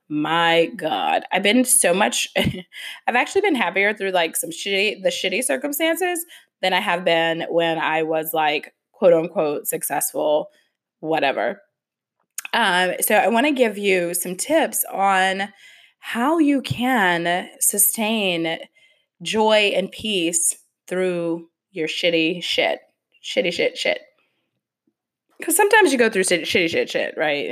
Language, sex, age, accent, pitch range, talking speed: English, female, 20-39, American, 170-240 Hz, 135 wpm